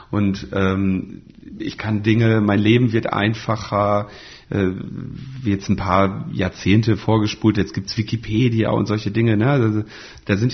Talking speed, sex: 150 wpm, male